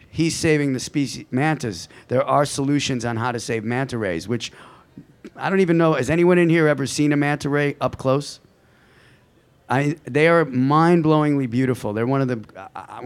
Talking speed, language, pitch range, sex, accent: 185 wpm, English, 120-145 Hz, male, American